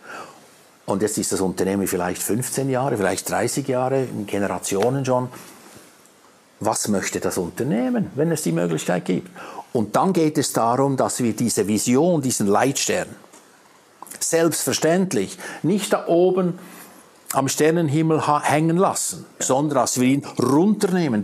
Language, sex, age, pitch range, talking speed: German, male, 60-79, 105-165 Hz, 135 wpm